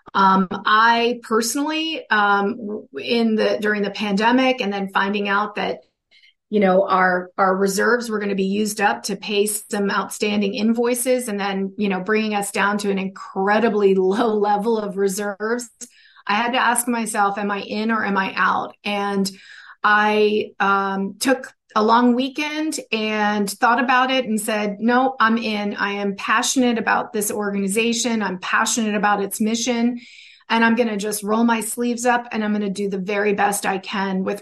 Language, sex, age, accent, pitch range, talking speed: English, female, 30-49, American, 200-235 Hz, 180 wpm